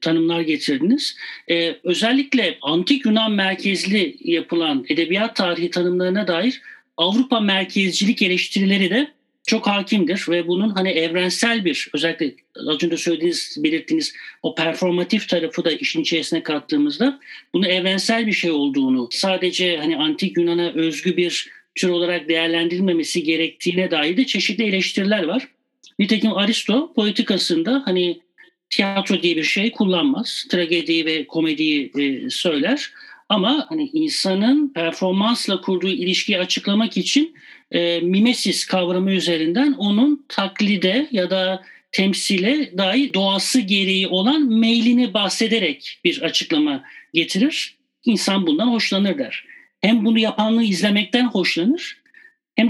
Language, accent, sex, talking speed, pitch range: Turkish, native, male, 120 wpm, 175-255 Hz